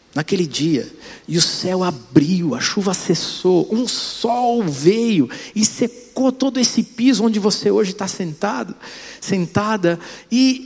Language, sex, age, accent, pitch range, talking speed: Portuguese, male, 50-69, Brazilian, 165-240 Hz, 130 wpm